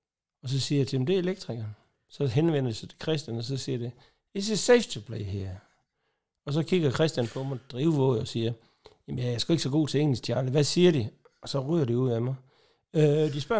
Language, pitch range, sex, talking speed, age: Danish, 115-155 Hz, male, 245 wpm, 60-79